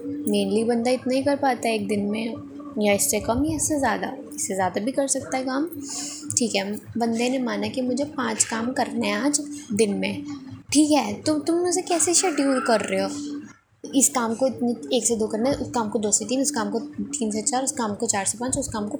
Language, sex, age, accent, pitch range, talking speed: Hindi, female, 20-39, native, 220-280 Hz, 240 wpm